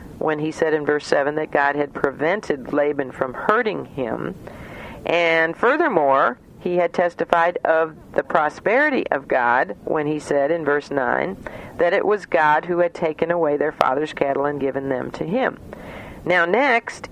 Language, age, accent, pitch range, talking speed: English, 50-69, American, 145-180 Hz, 170 wpm